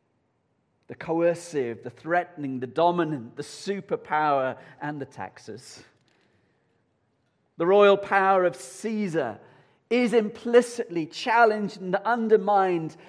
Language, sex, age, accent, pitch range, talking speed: English, male, 40-59, British, 130-200 Hz, 95 wpm